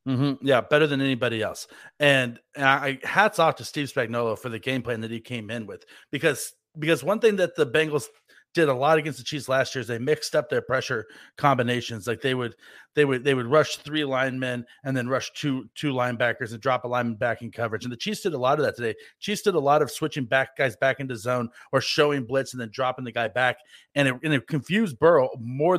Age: 40-59